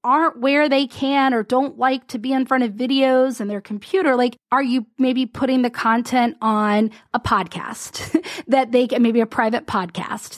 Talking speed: 190 wpm